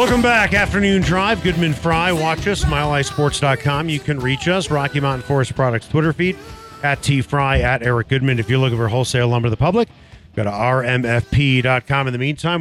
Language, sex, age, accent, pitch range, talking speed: English, male, 40-59, American, 125-160 Hz, 190 wpm